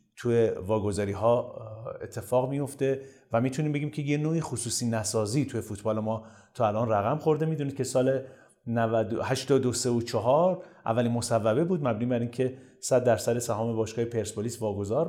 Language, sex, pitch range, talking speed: Persian, male, 115-140 Hz, 145 wpm